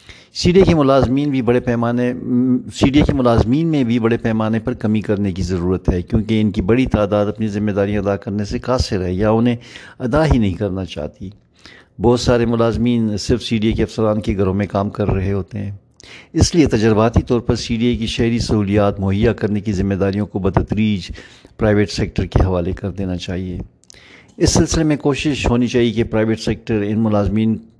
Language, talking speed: Urdu, 205 wpm